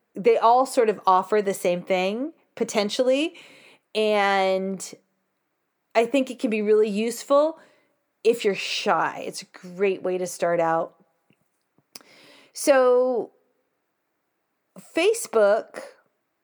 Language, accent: English, American